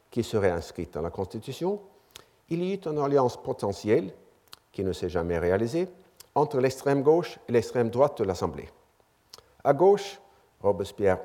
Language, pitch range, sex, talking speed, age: French, 115-175 Hz, male, 150 wpm, 50-69